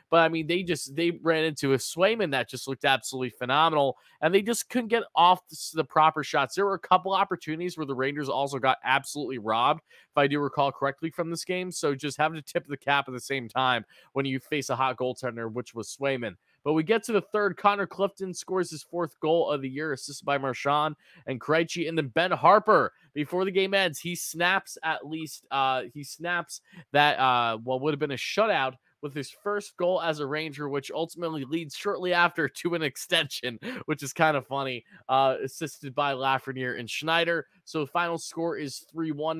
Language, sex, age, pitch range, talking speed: English, male, 20-39, 135-170 Hz, 215 wpm